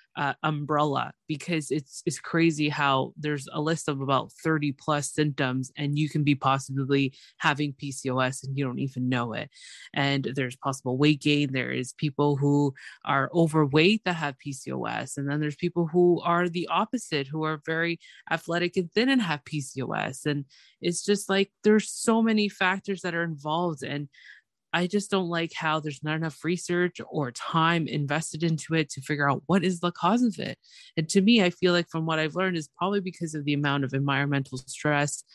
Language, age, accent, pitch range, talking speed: English, 20-39, American, 140-170 Hz, 190 wpm